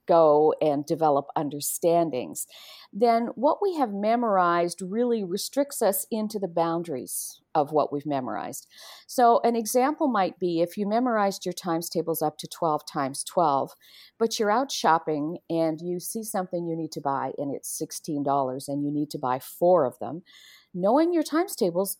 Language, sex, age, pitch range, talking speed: English, female, 50-69, 160-205 Hz, 170 wpm